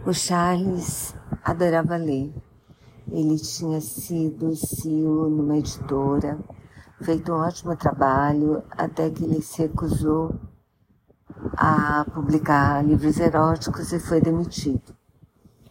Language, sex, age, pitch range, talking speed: Portuguese, female, 50-69, 140-160 Hz, 100 wpm